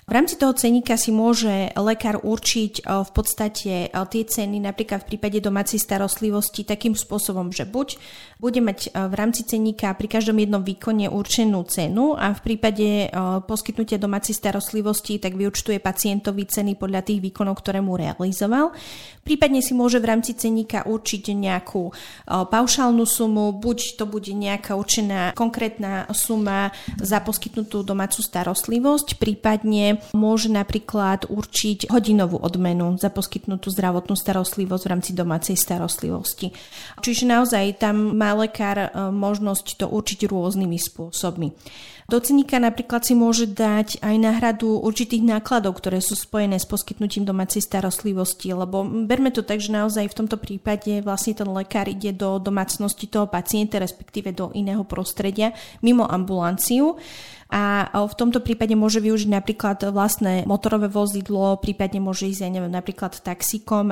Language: Slovak